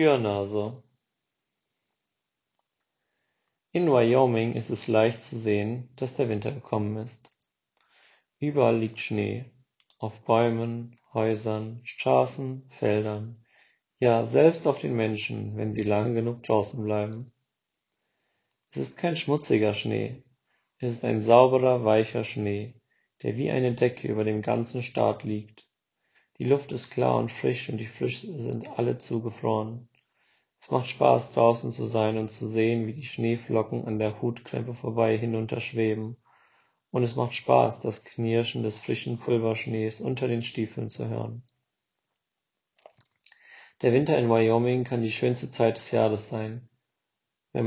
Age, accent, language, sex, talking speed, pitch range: 40-59, German, German, male, 135 wpm, 110-125 Hz